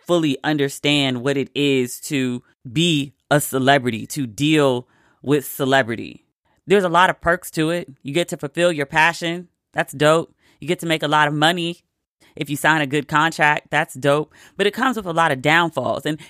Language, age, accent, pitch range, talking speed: English, 30-49, American, 145-165 Hz, 195 wpm